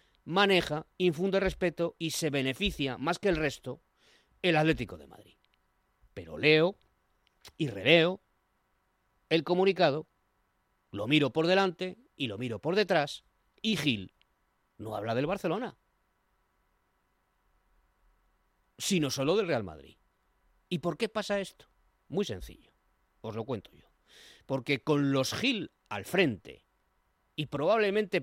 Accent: Spanish